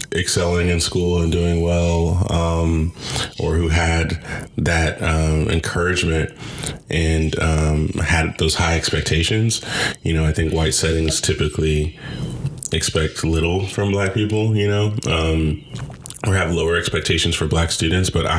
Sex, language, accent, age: male, English, American, 20-39